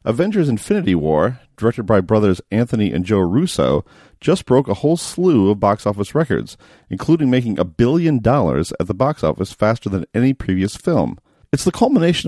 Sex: male